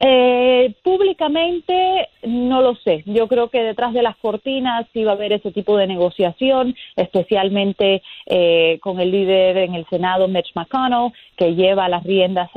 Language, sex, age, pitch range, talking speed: Spanish, female, 30-49, 175-220 Hz, 160 wpm